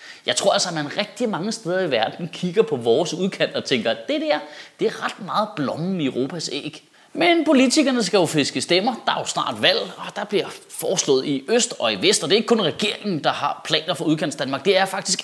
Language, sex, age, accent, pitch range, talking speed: Danish, male, 20-39, native, 150-220 Hz, 245 wpm